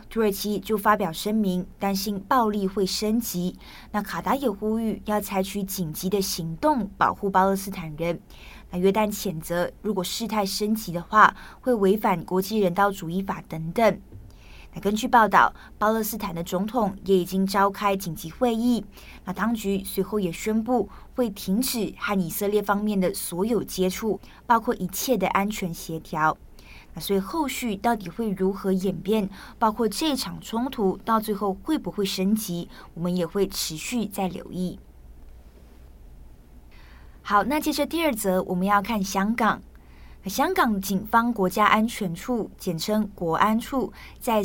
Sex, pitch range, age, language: female, 180-220 Hz, 20-39, Chinese